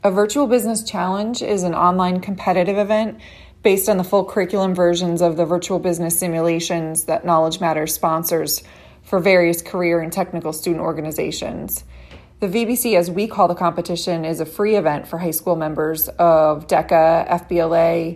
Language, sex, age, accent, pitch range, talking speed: English, female, 20-39, American, 165-185 Hz, 160 wpm